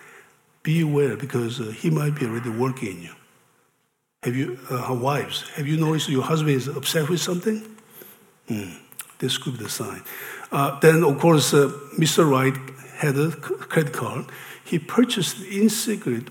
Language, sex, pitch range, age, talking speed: English, male, 125-165 Hz, 50-69, 165 wpm